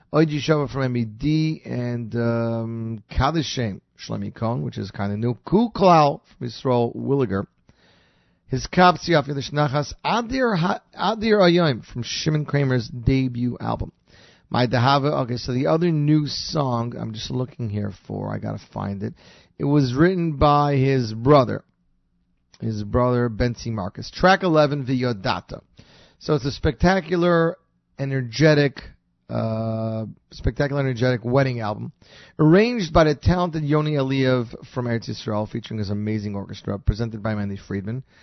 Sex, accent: male, American